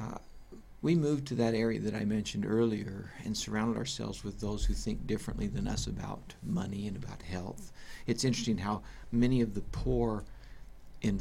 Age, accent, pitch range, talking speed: 60-79, American, 105-130 Hz, 175 wpm